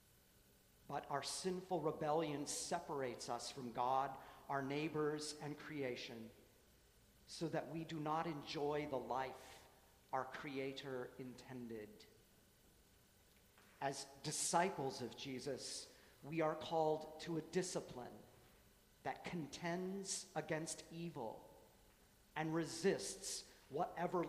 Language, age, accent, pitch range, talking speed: English, 50-69, American, 130-160 Hz, 100 wpm